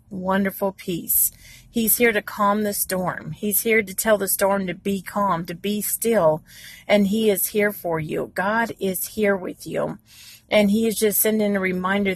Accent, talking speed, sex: American, 190 wpm, female